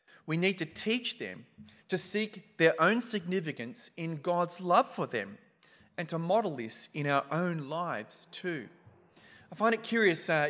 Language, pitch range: English, 150-195 Hz